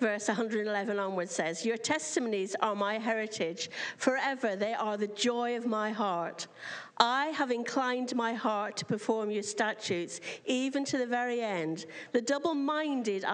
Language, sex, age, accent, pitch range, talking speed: English, female, 50-69, British, 220-315 Hz, 150 wpm